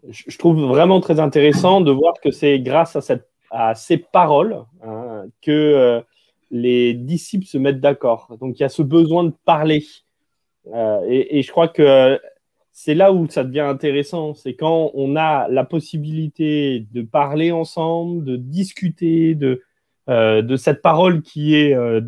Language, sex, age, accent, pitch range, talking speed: French, male, 30-49, French, 130-170 Hz, 165 wpm